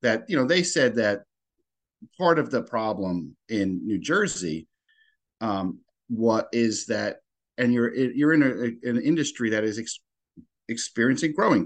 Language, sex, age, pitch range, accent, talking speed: English, male, 50-69, 110-170 Hz, American, 150 wpm